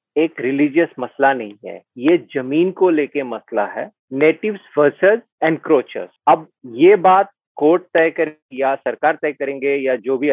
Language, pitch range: Hindi, 140-190 Hz